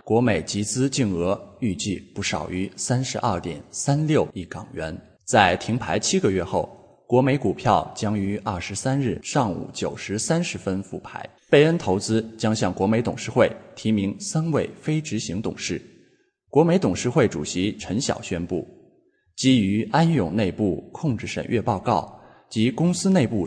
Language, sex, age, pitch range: English, male, 20-39, 100-145 Hz